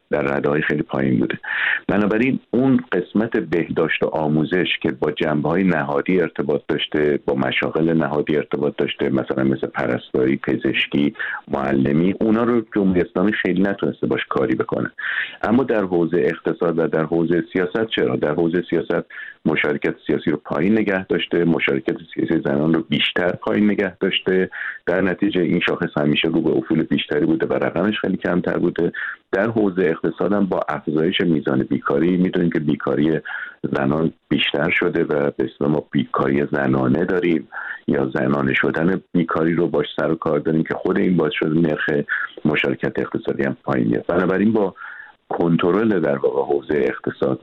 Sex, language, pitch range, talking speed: male, Persian, 75-95 Hz, 160 wpm